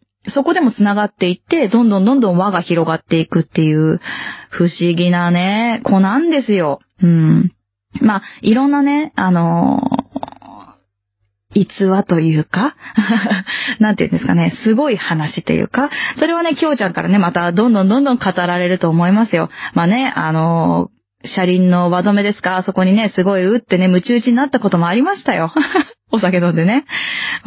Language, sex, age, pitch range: Japanese, female, 20-39, 175-240 Hz